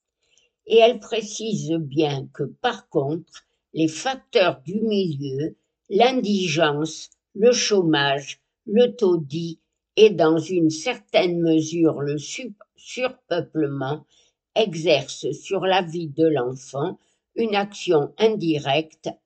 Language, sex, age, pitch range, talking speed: French, female, 60-79, 155-205 Hz, 100 wpm